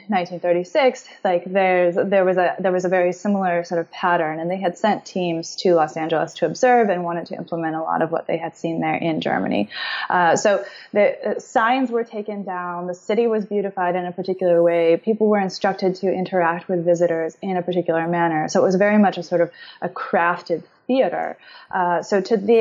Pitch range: 165-190 Hz